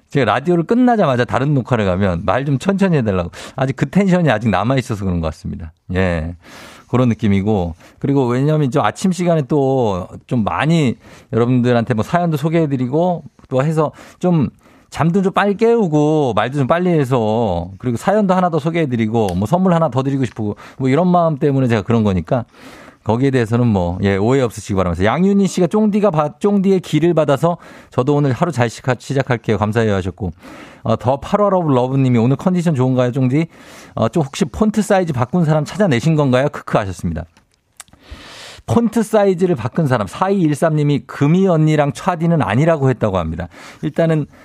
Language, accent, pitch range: Korean, native, 115-170 Hz